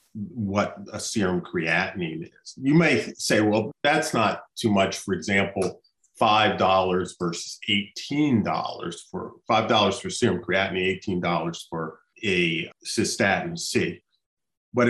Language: English